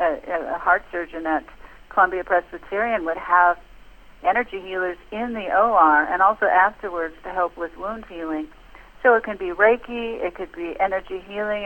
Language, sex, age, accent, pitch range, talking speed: English, female, 50-69, American, 180-220 Hz, 160 wpm